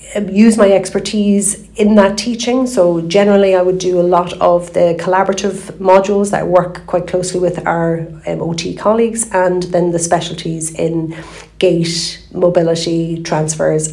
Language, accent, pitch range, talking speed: English, Irish, 165-190 Hz, 145 wpm